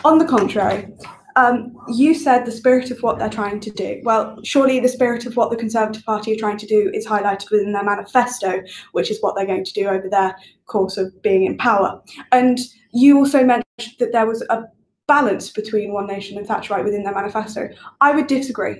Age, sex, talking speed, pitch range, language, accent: 10-29, female, 210 wpm, 210-245 Hz, English, British